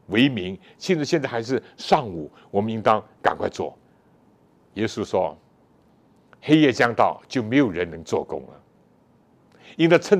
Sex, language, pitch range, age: male, Chinese, 125-170 Hz, 60-79